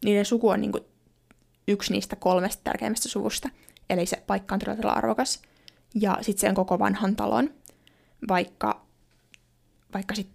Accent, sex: native, female